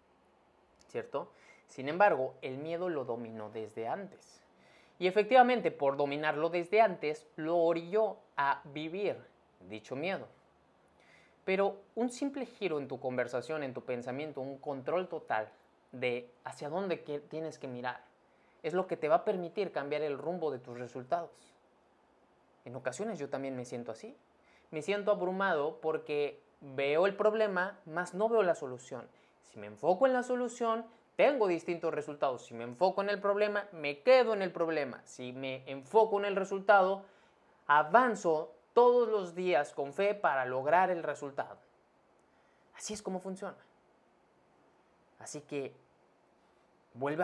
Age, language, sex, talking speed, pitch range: 20-39, Spanish, male, 145 wpm, 140-200 Hz